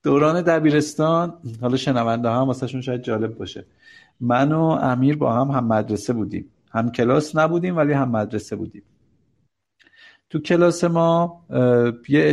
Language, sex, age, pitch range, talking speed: Persian, male, 50-69, 115-155 Hz, 135 wpm